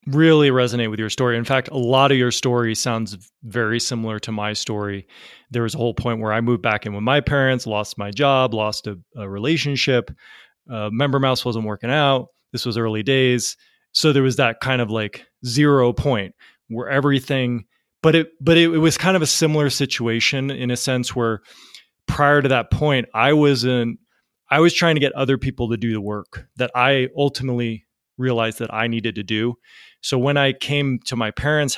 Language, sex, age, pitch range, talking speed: English, male, 20-39, 115-135 Hz, 200 wpm